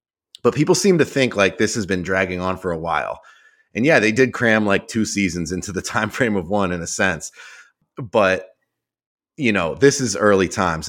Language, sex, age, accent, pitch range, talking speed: English, male, 30-49, American, 95-125 Hz, 210 wpm